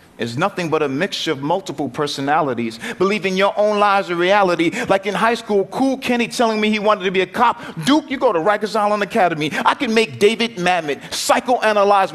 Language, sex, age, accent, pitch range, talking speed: English, male, 40-59, American, 185-230 Hz, 205 wpm